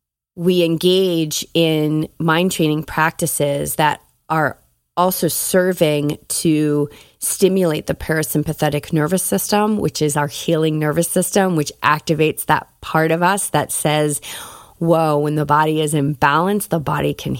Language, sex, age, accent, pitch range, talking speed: English, female, 30-49, American, 150-175 Hz, 140 wpm